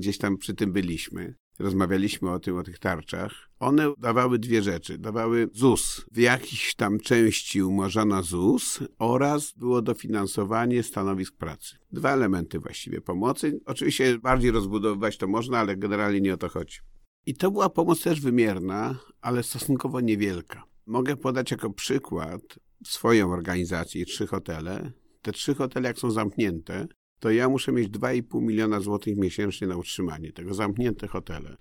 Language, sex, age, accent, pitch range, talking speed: Polish, male, 50-69, native, 95-125 Hz, 150 wpm